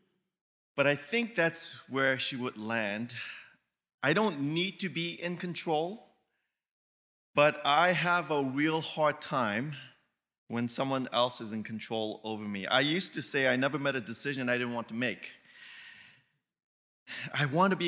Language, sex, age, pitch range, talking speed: English, male, 30-49, 120-165 Hz, 160 wpm